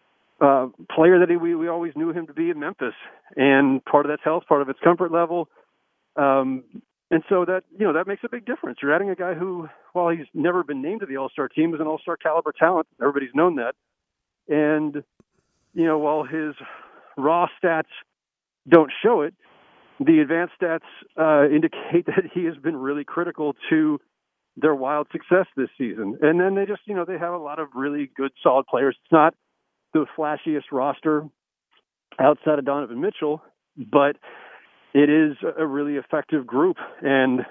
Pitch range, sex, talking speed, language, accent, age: 140-170 Hz, male, 185 wpm, English, American, 40-59